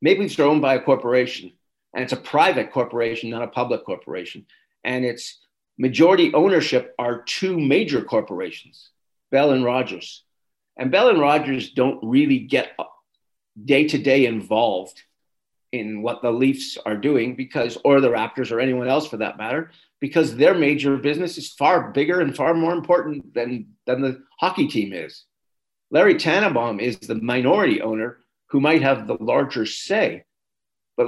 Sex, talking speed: male, 155 wpm